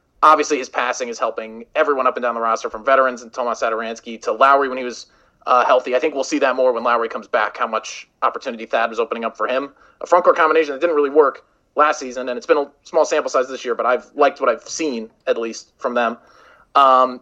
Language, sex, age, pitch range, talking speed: English, male, 30-49, 125-160 Hz, 250 wpm